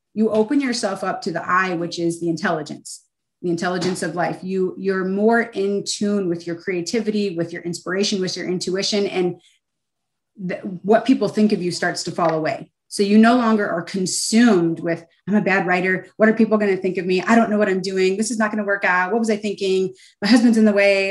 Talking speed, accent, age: 225 wpm, American, 30-49